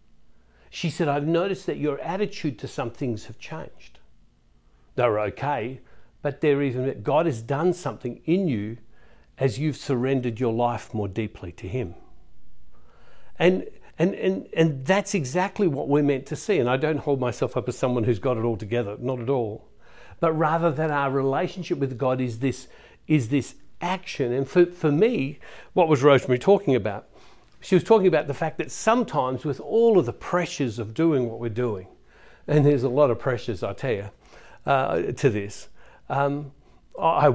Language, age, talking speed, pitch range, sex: English, 60-79, 180 wpm, 120-160 Hz, male